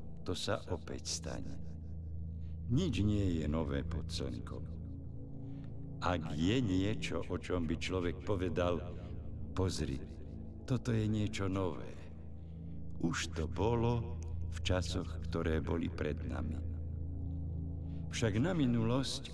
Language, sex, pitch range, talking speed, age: Slovak, male, 80-100 Hz, 105 wpm, 60-79